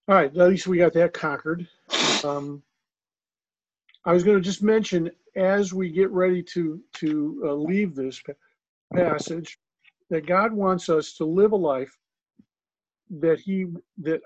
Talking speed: 150 wpm